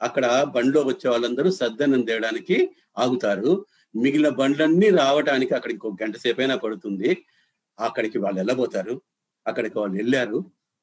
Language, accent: Telugu, native